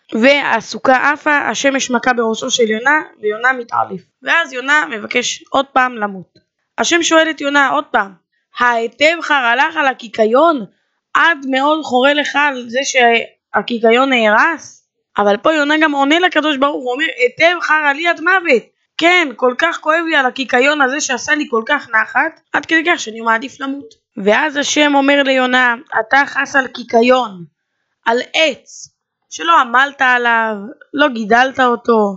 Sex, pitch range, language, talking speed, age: female, 245-305 Hz, Hebrew, 155 wpm, 20-39